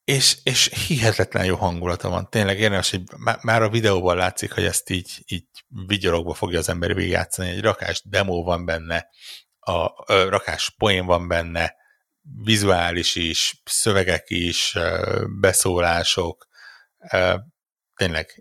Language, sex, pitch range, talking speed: Hungarian, male, 90-110 Hz, 125 wpm